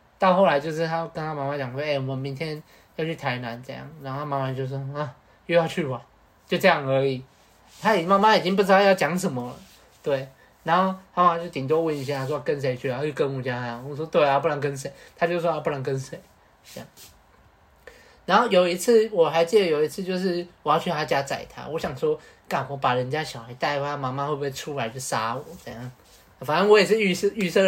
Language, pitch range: Chinese, 135-180 Hz